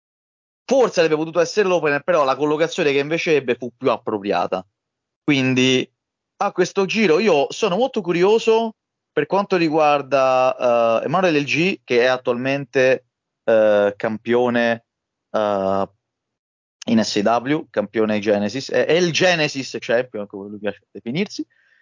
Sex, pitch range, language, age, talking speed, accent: male, 110-140 Hz, Italian, 30-49, 120 wpm, native